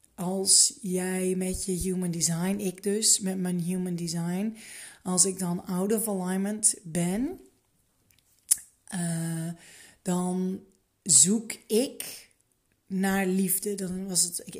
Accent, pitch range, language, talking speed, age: Dutch, 180-205 Hz, Dutch, 120 wpm, 30-49